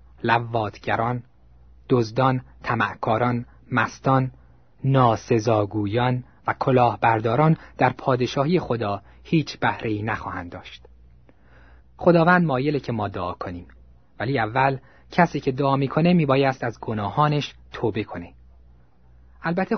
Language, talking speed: Persian, 95 wpm